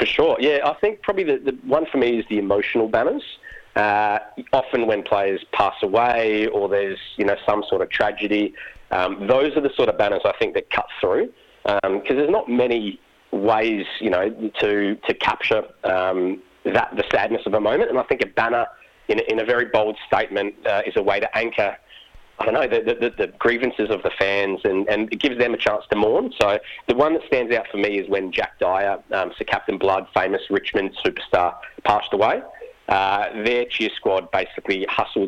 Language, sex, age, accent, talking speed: English, male, 30-49, Australian, 210 wpm